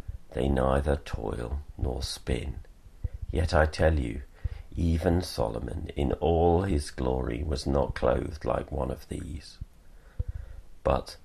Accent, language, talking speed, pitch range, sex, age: British, English, 125 wpm, 70-85 Hz, male, 50-69